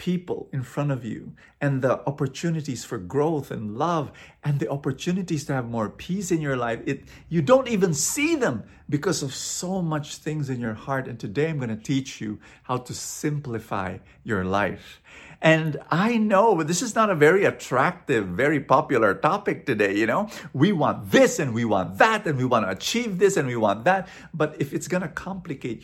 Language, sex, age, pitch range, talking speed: English, male, 50-69, 110-165 Hz, 200 wpm